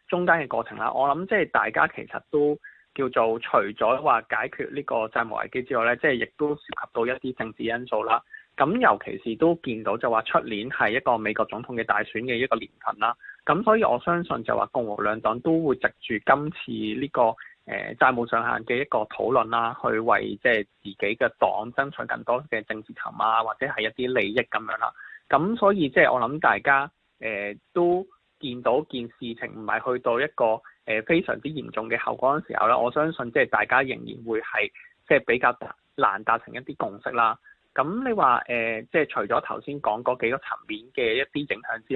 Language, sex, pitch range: Chinese, male, 115-160 Hz